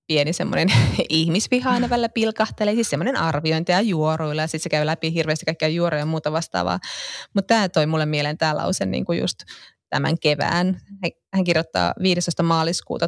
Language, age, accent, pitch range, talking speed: Finnish, 20-39, native, 155-190 Hz, 155 wpm